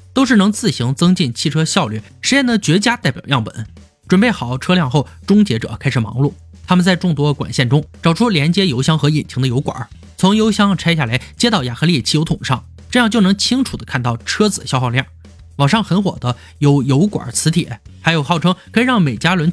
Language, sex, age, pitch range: Chinese, male, 20-39, 125-190 Hz